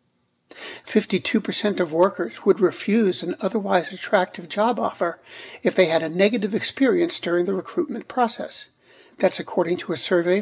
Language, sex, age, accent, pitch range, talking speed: English, male, 60-79, American, 180-225 Hz, 140 wpm